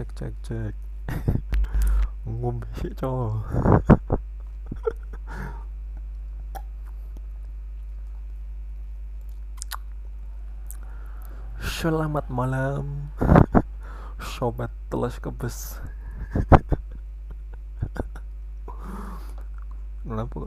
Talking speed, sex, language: 30 wpm, male, Indonesian